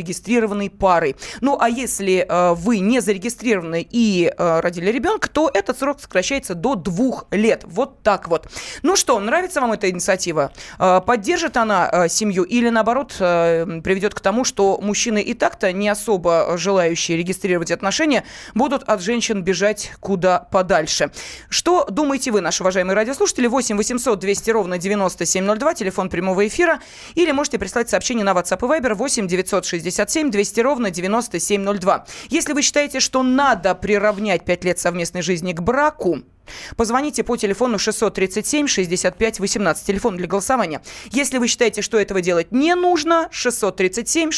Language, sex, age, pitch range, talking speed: Russian, female, 20-39, 185-255 Hz, 150 wpm